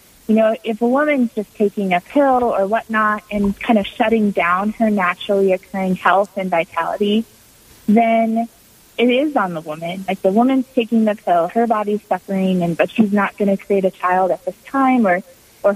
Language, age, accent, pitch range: English, 30-49, American, 190-235 Hz